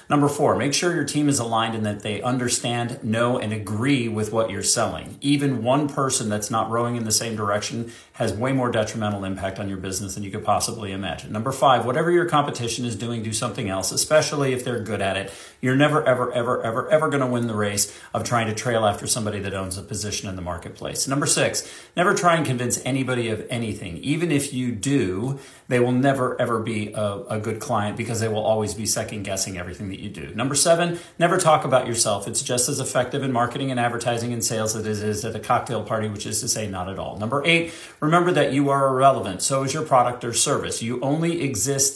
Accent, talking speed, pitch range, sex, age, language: American, 230 wpm, 110-140 Hz, male, 40-59, English